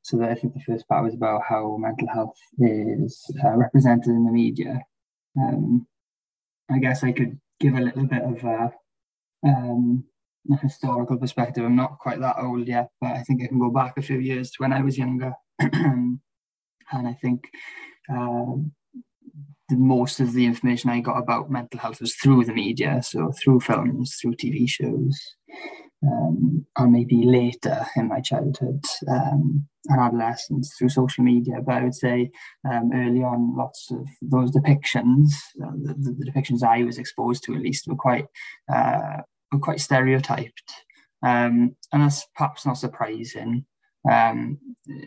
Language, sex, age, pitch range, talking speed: English, male, 10-29, 120-140 Hz, 165 wpm